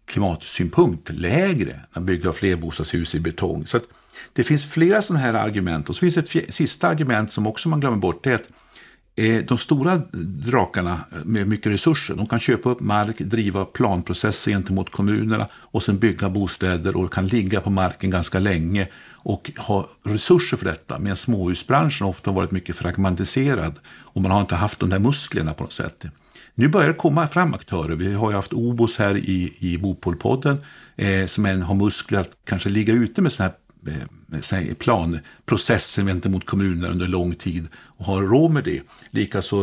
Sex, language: male, Swedish